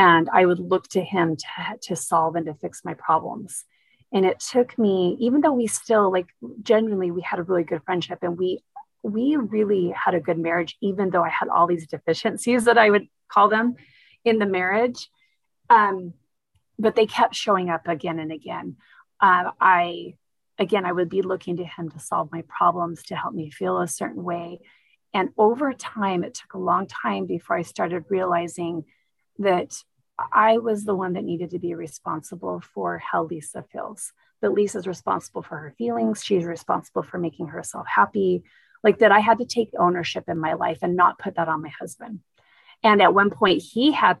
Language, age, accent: English, 30-49, American